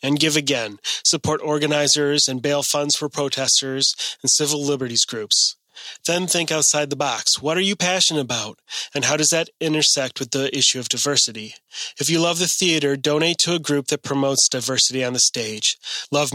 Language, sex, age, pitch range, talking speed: English, male, 30-49, 130-160 Hz, 185 wpm